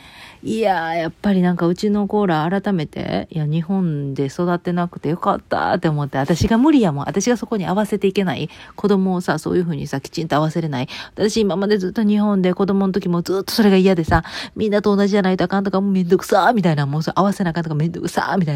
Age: 40-59